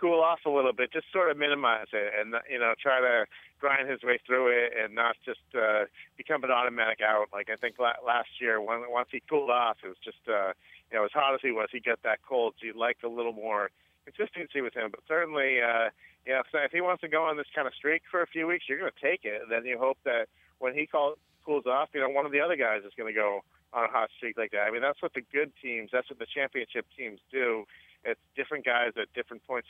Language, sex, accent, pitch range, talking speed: English, male, American, 115-145 Hz, 265 wpm